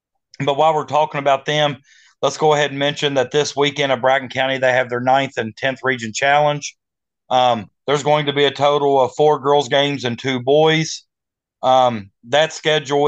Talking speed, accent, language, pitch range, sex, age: 195 wpm, American, English, 135-155 Hz, male, 30-49